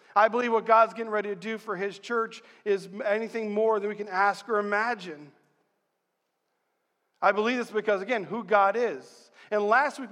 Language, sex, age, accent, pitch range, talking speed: English, male, 40-59, American, 200-245 Hz, 185 wpm